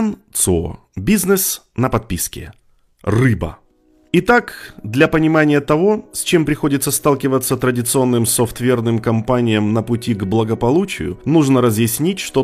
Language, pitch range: Russian, 110-155 Hz